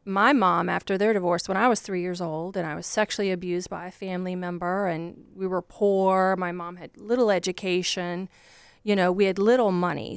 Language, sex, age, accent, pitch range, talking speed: English, female, 30-49, American, 180-210 Hz, 205 wpm